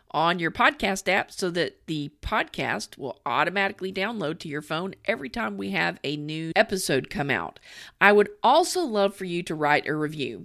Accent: American